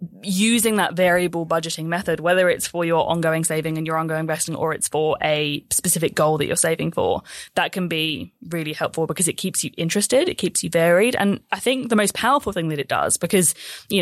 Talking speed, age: 220 wpm, 20-39